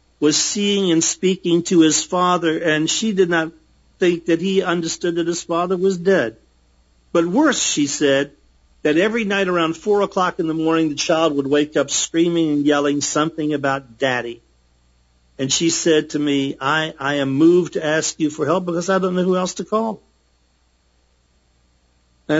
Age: 50-69